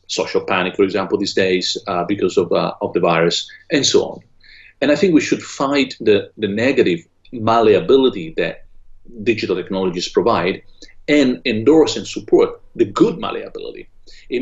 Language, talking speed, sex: English, 160 wpm, male